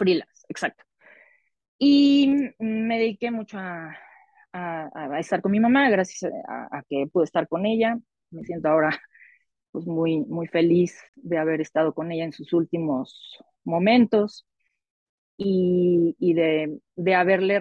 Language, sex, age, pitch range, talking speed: Spanish, female, 30-49, 165-225 Hz, 140 wpm